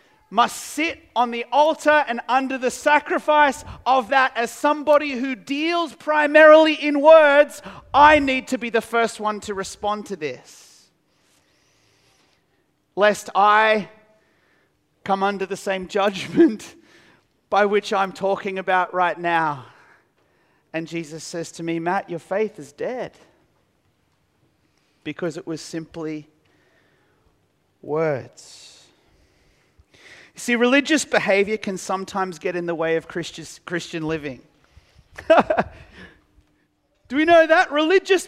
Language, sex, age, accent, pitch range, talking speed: English, male, 30-49, Australian, 195-300 Hz, 120 wpm